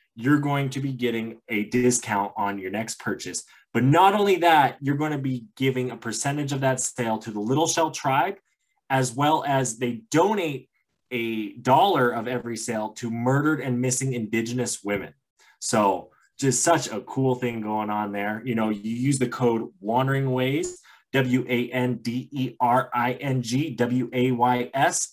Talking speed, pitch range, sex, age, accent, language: 155 wpm, 105-135 Hz, male, 20-39, American, English